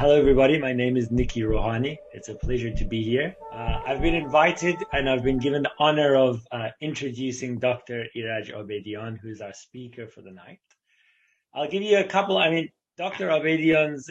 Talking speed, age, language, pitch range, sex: 185 wpm, 30-49, English, 120-145 Hz, male